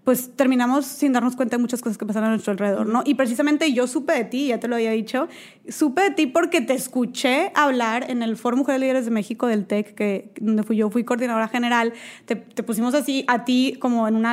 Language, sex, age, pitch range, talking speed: Spanish, female, 20-39, 230-275 Hz, 245 wpm